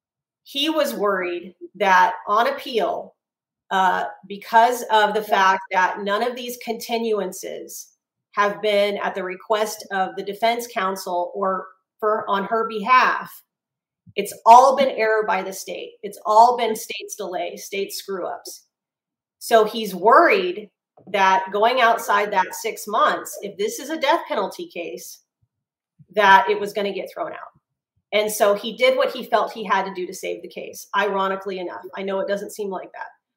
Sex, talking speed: female, 165 wpm